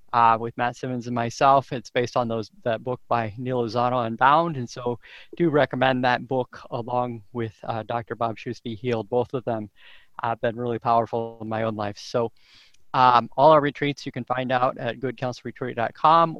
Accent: American